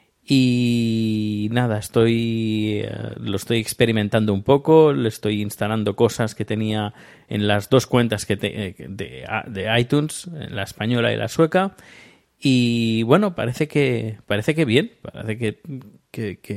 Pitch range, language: 105-125 Hz, Spanish